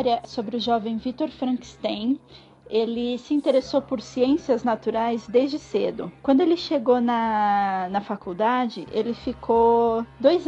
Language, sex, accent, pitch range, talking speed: Portuguese, female, Brazilian, 230-280 Hz, 125 wpm